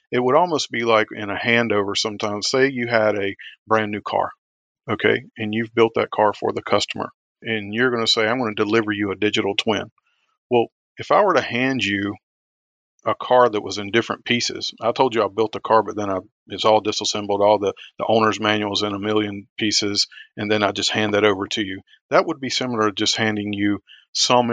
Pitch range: 105-120 Hz